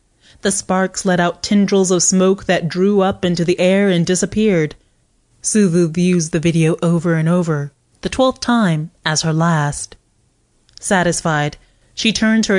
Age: 30-49